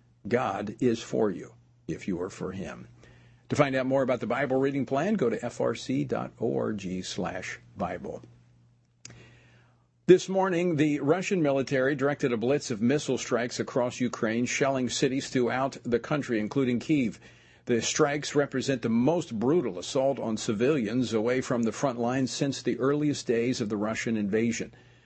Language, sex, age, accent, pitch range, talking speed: English, male, 50-69, American, 115-145 Hz, 155 wpm